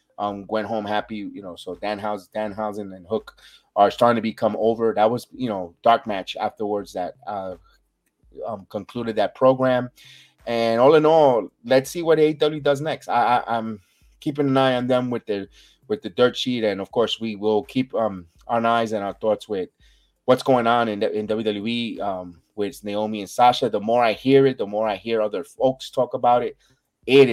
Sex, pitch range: male, 105-130 Hz